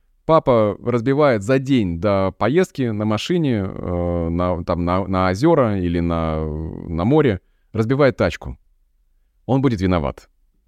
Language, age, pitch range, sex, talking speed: Russian, 20-39, 90-130 Hz, male, 120 wpm